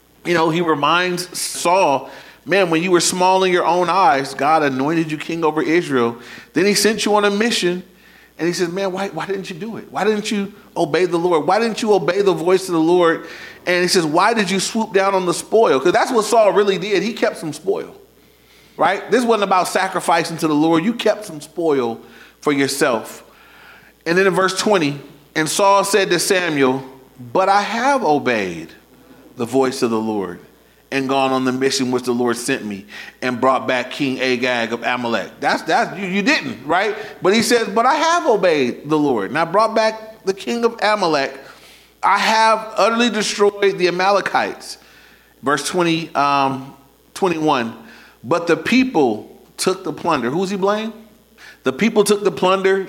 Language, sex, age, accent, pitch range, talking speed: English, male, 30-49, American, 150-205 Hz, 195 wpm